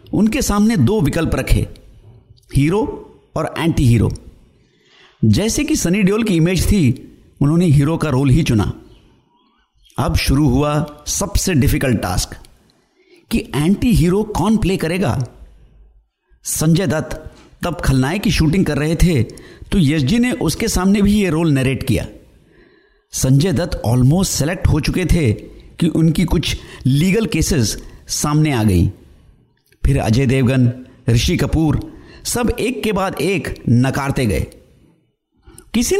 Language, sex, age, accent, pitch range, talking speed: Hindi, male, 60-79, native, 130-205 Hz, 135 wpm